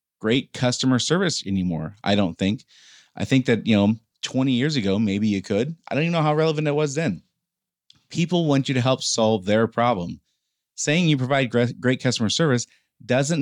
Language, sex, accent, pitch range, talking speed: English, male, American, 105-130 Hz, 190 wpm